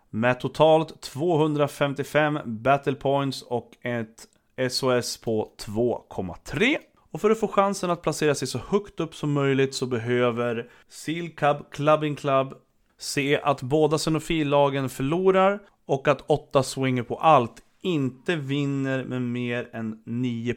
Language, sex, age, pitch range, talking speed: Swedish, male, 30-49, 120-160 Hz, 135 wpm